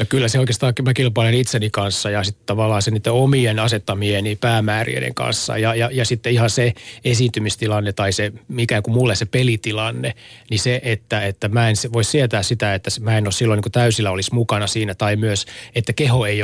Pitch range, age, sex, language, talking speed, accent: 105-120 Hz, 30-49, male, Finnish, 210 wpm, native